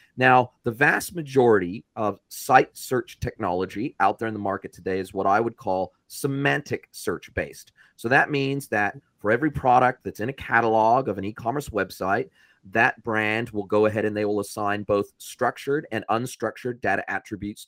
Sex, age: male, 30-49